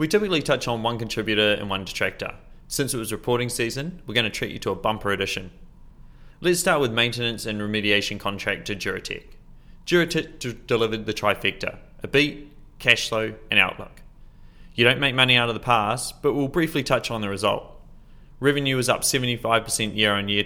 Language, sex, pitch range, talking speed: English, male, 105-135 Hz, 190 wpm